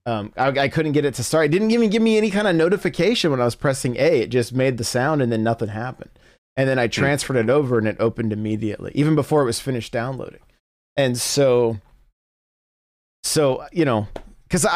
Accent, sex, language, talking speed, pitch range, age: American, male, English, 215 wpm, 115-150 Hz, 30-49